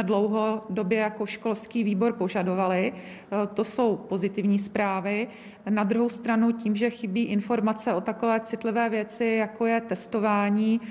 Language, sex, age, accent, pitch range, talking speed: Czech, female, 40-59, native, 205-220 Hz, 125 wpm